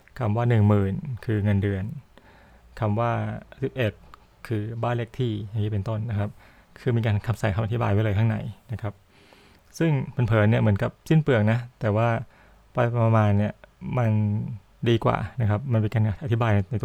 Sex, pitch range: male, 105-125 Hz